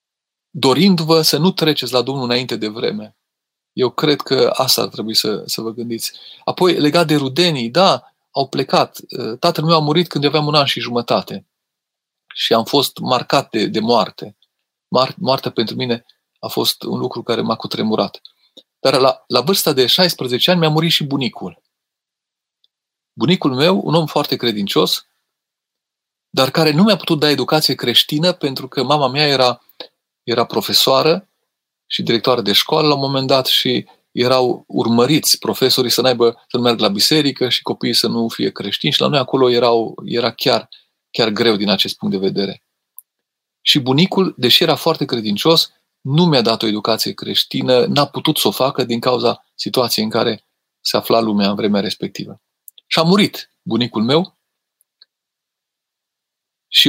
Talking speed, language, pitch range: 165 wpm, Romanian, 120-155 Hz